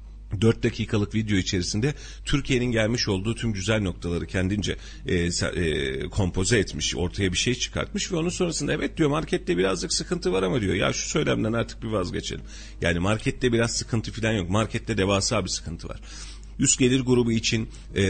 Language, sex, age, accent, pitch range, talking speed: Turkish, male, 40-59, native, 95-115 Hz, 170 wpm